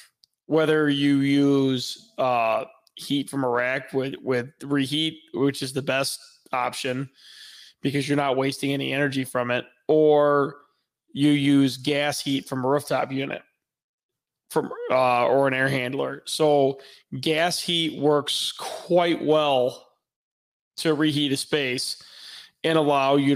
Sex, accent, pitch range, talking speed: male, American, 135-155 Hz, 135 wpm